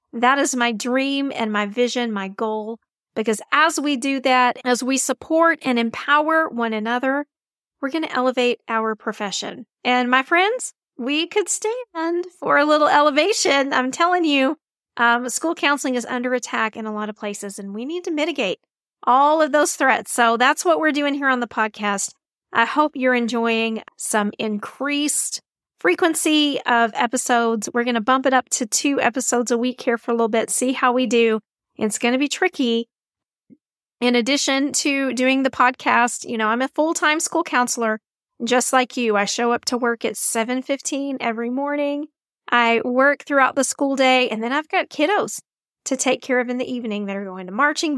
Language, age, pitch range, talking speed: English, 40-59, 235-290 Hz, 190 wpm